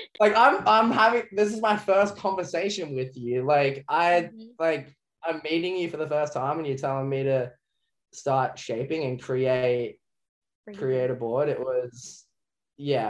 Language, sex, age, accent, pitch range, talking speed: English, male, 10-29, Australian, 115-140 Hz, 165 wpm